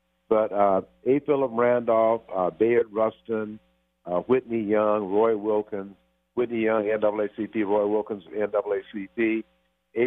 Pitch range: 100-120 Hz